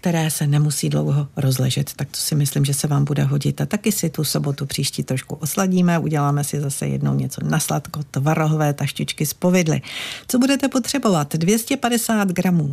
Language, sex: Czech, female